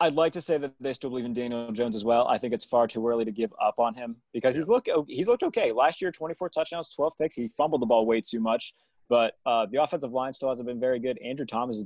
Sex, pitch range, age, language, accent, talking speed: male, 115-130 Hz, 20-39, English, American, 280 wpm